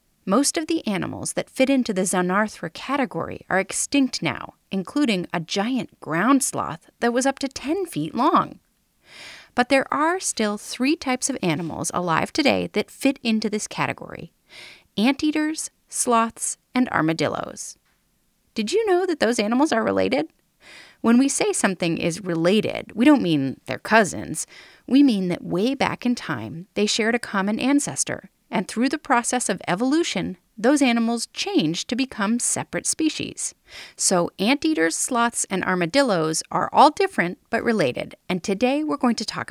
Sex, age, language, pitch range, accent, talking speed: female, 30-49, English, 180-270 Hz, American, 160 wpm